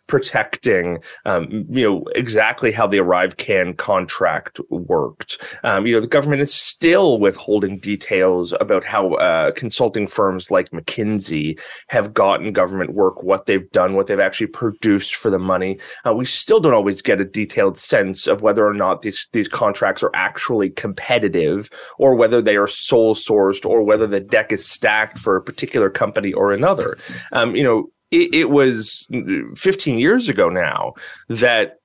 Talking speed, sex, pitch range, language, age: 170 wpm, male, 100-130 Hz, English, 30-49